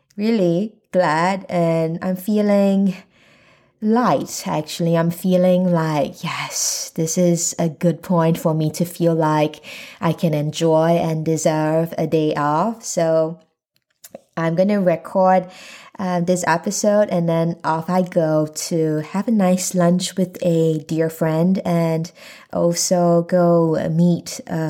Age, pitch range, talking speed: 20-39, 160-185 Hz, 135 wpm